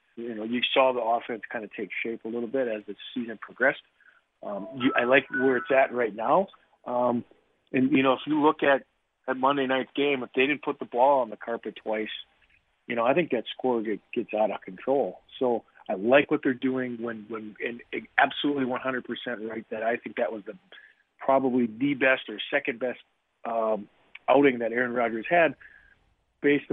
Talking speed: 200 wpm